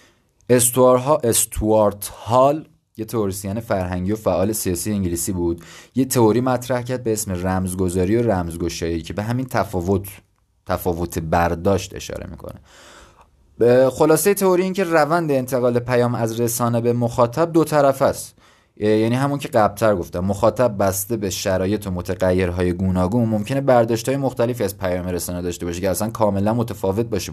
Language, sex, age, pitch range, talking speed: Persian, male, 30-49, 95-125 Hz, 150 wpm